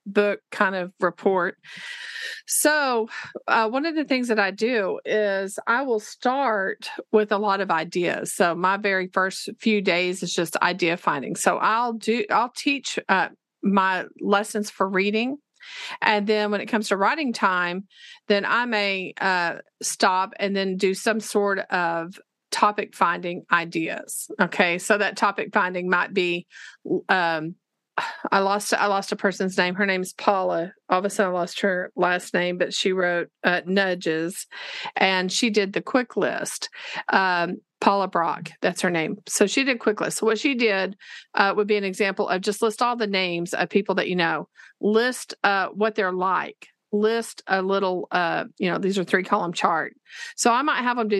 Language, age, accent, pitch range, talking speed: English, 40-59, American, 190-230 Hz, 185 wpm